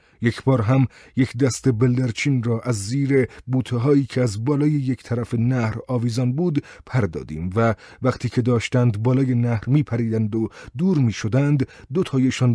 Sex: male